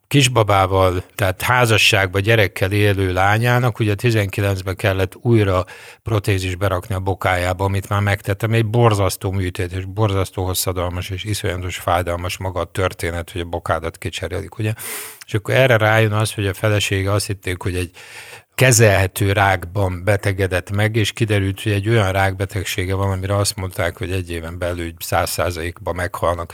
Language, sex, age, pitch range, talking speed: Hungarian, male, 50-69, 95-110 Hz, 150 wpm